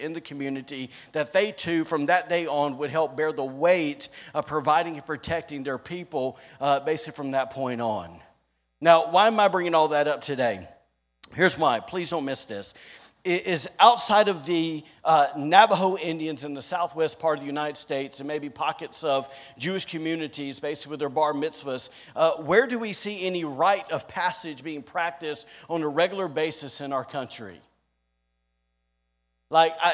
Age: 50-69